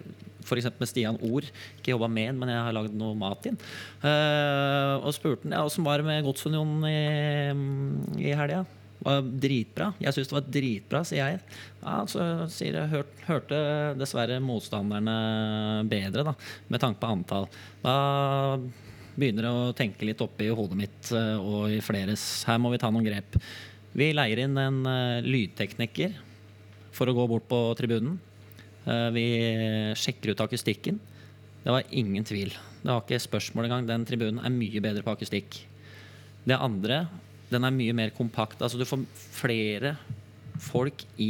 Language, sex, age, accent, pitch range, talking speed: English, male, 20-39, Swedish, 110-135 Hz, 165 wpm